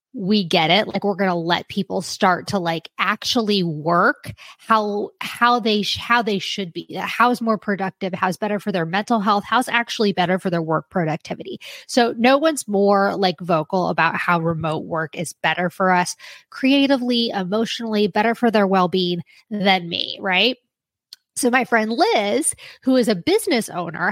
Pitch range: 180-235 Hz